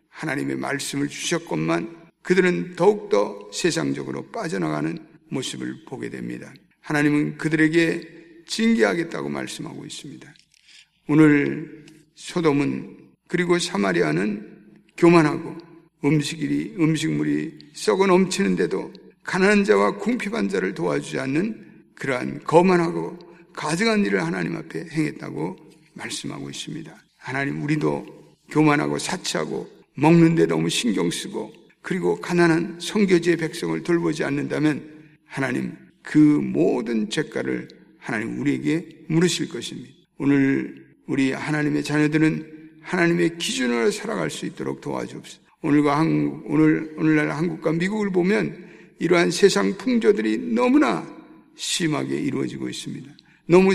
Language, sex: Korean, male